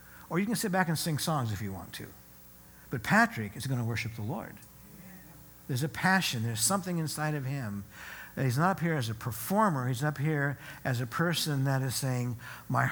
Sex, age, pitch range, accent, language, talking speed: male, 60-79, 115-170 Hz, American, English, 215 wpm